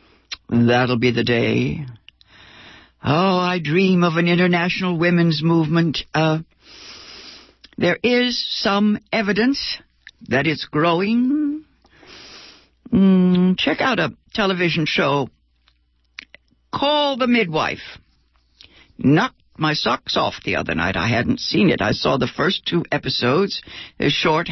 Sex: female